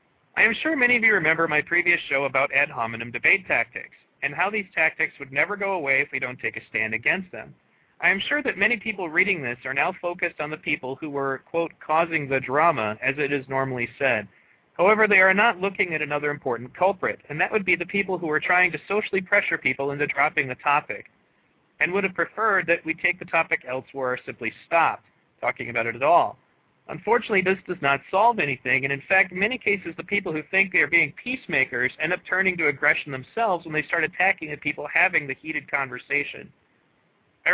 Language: English